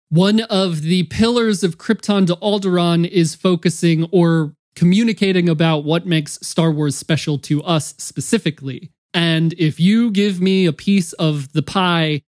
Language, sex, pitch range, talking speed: English, male, 150-185 Hz, 150 wpm